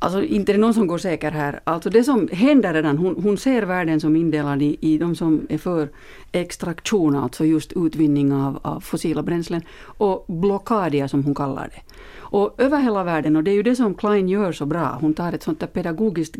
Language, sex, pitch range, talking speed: Finnish, female, 160-225 Hz, 215 wpm